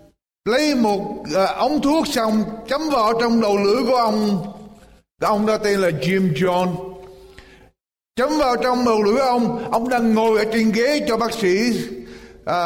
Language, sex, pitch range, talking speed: Vietnamese, male, 200-245 Hz, 170 wpm